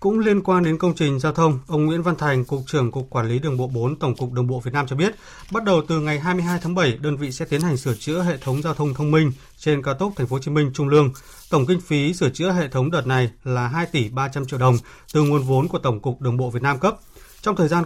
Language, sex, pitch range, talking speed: Vietnamese, male, 130-165 Hz, 290 wpm